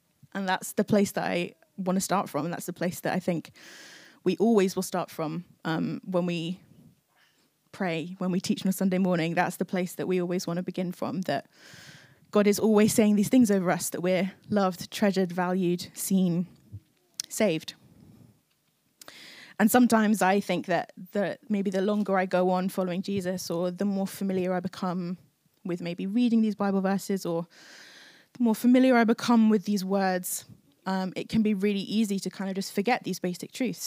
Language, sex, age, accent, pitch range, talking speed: English, female, 20-39, British, 175-205 Hz, 190 wpm